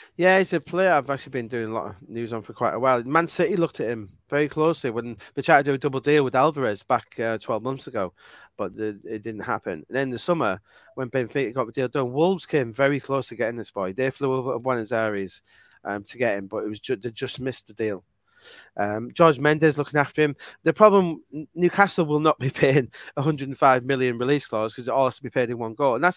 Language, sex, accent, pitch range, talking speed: English, male, British, 125-155 Hz, 250 wpm